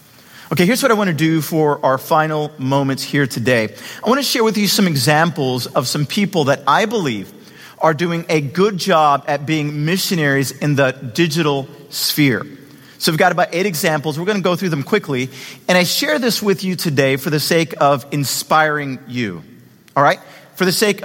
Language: English